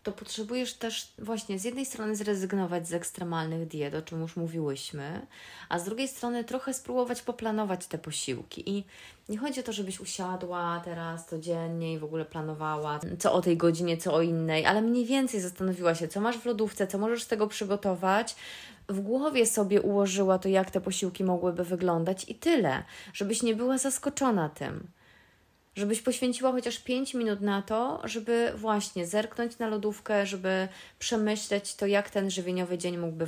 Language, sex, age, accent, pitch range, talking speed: Polish, female, 20-39, native, 170-215 Hz, 170 wpm